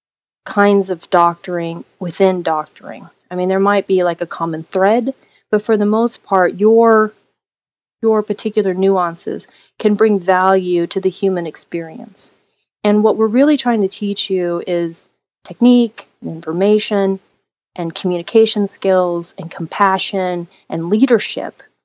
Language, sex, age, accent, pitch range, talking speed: English, female, 30-49, American, 175-215 Hz, 135 wpm